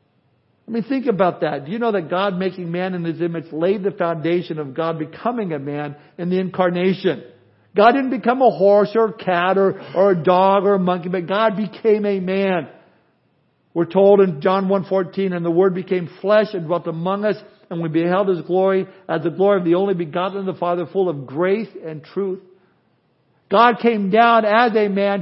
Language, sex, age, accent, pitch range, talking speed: English, male, 60-79, American, 155-195 Hz, 205 wpm